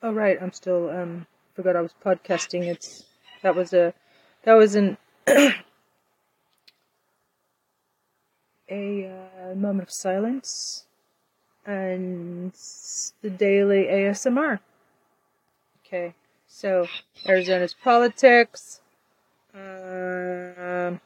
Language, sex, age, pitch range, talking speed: English, female, 30-49, 185-210 Hz, 85 wpm